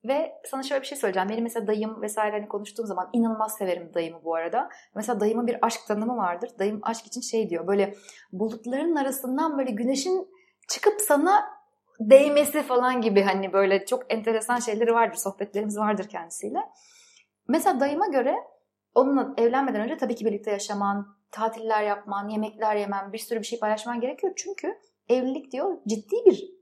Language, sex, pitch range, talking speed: Turkish, female, 205-275 Hz, 165 wpm